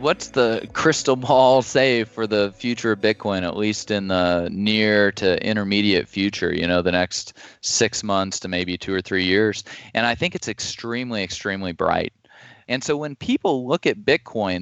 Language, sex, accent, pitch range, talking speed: English, male, American, 100-135 Hz, 180 wpm